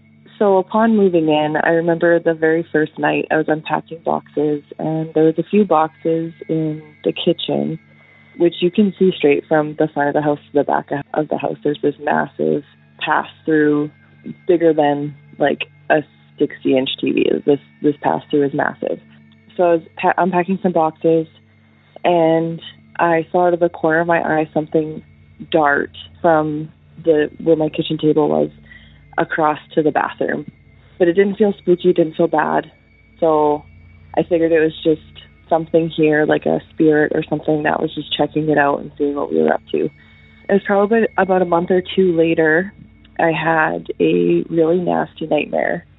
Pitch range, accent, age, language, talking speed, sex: 150-170 Hz, American, 20-39, English, 175 wpm, female